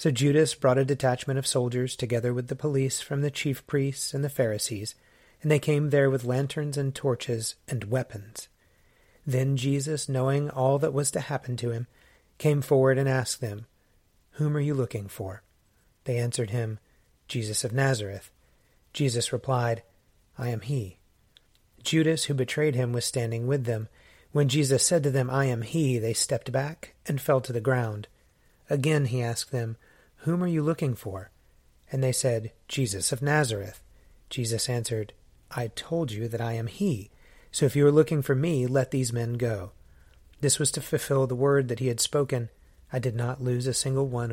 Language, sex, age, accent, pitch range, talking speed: English, male, 30-49, American, 115-145 Hz, 185 wpm